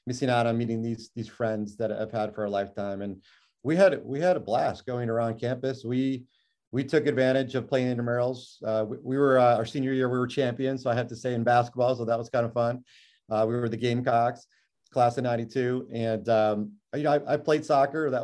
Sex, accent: male, American